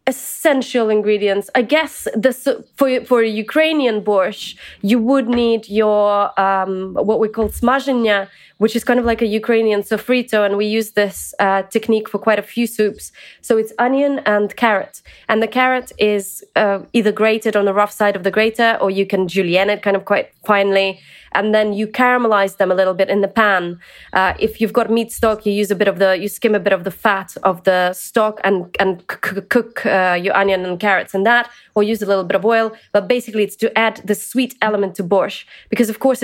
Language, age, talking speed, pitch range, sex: English, 20-39, 220 wpm, 195-230 Hz, female